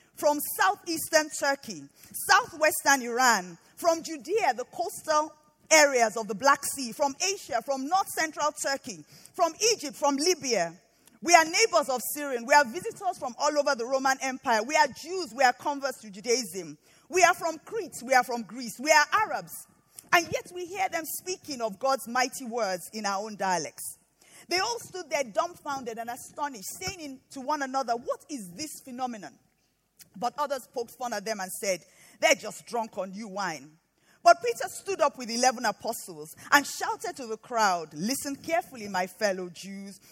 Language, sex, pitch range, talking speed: English, female, 215-315 Hz, 175 wpm